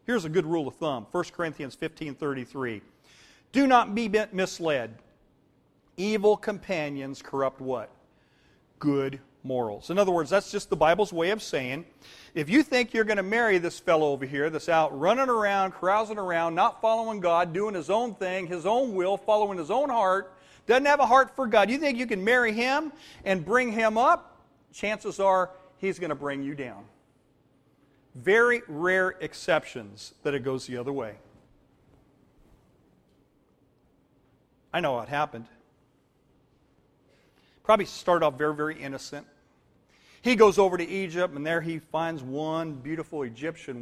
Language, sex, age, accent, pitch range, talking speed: English, male, 40-59, American, 145-215 Hz, 155 wpm